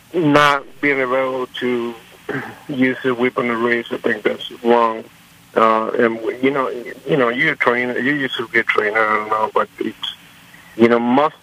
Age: 50-69